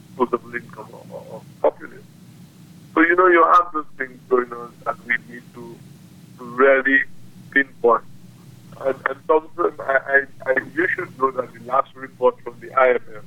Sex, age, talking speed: male, 50-69, 155 wpm